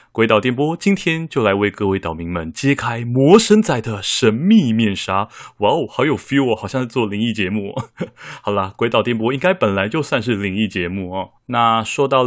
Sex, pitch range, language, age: male, 105-140 Hz, Chinese, 20-39